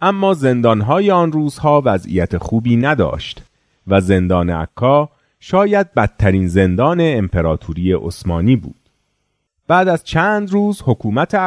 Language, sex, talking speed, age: Persian, male, 110 wpm, 40-59